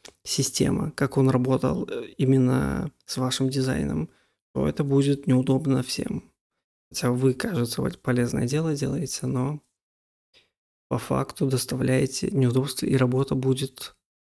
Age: 20-39